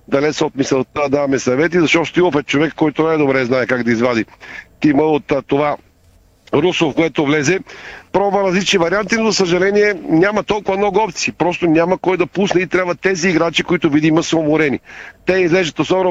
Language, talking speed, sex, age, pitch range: Bulgarian, 185 wpm, male, 50-69, 145-180 Hz